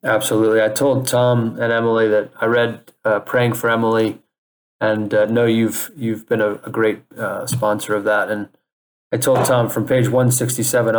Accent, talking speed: American, 180 wpm